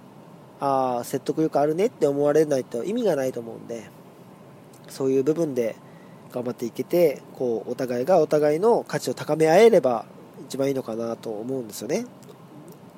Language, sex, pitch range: Japanese, male, 130-185 Hz